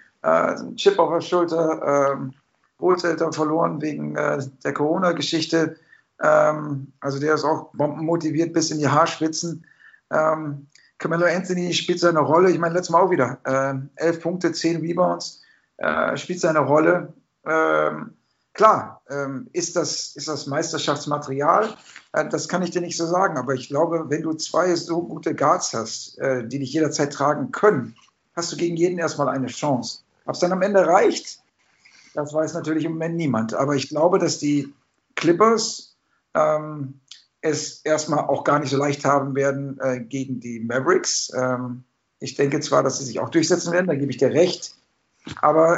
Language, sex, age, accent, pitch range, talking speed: German, male, 50-69, German, 140-170 Hz, 170 wpm